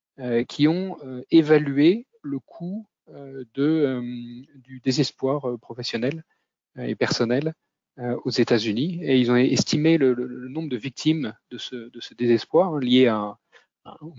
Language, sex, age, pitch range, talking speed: French, male, 30-49, 120-145 Hz, 170 wpm